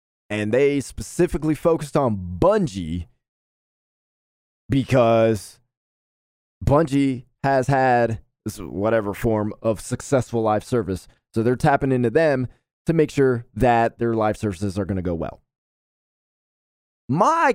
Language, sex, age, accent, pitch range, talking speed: English, male, 20-39, American, 105-135 Hz, 120 wpm